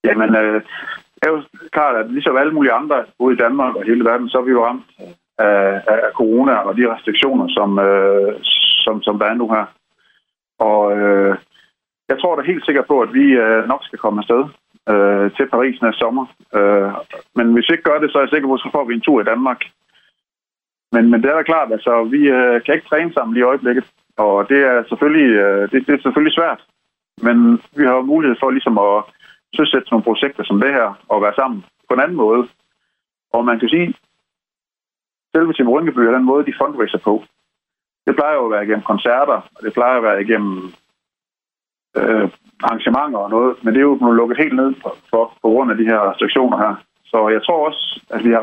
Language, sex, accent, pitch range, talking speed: Danish, male, native, 105-135 Hz, 220 wpm